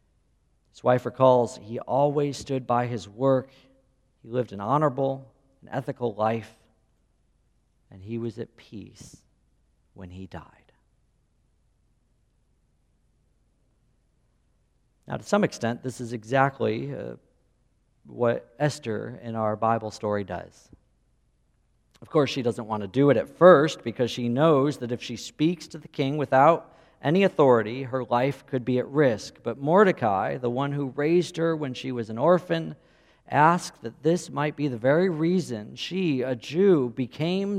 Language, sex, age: English, male, 50-69